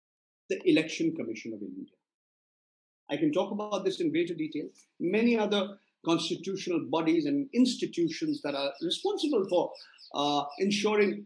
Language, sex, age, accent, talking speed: English, male, 50-69, Indian, 135 wpm